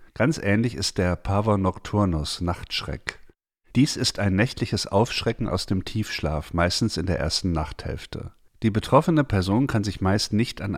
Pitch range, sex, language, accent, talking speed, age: 90-110 Hz, male, German, German, 155 wpm, 50-69